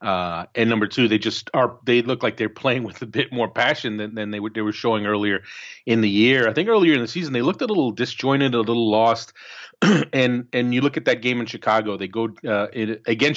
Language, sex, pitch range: English, male, 110-125 Hz